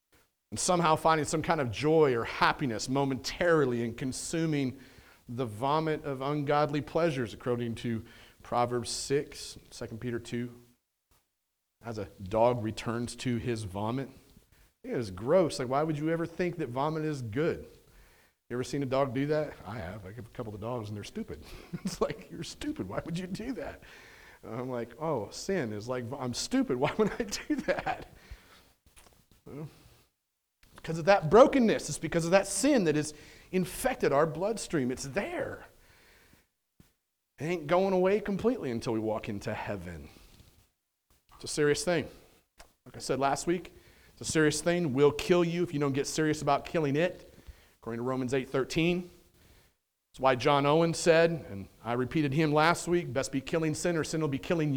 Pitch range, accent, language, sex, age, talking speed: 120-170 Hz, American, English, male, 40-59, 175 wpm